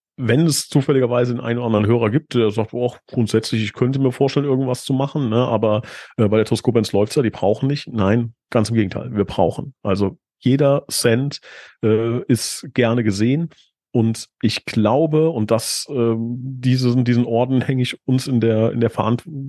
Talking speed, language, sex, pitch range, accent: 190 wpm, German, male, 110-130 Hz, German